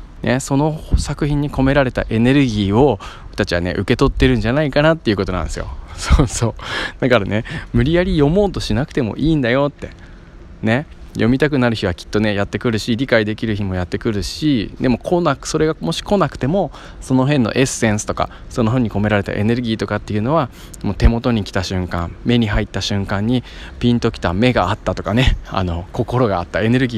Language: Japanese